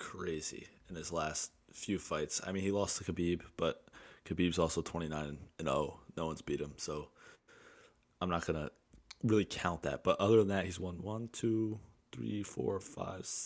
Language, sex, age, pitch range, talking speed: English, male, 20-39, 85-100 Hz, 185 wpm